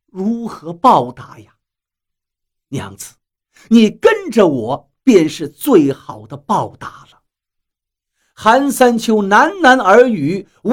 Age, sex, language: 50-69, male, Chinese